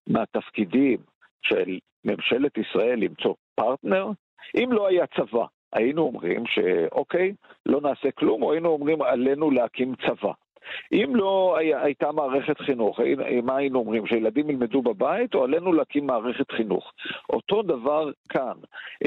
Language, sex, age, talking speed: Hebrew, male, 50-69, 130 wpm